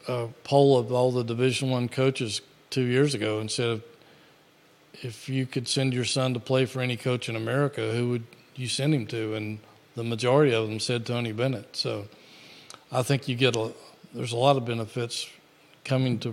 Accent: American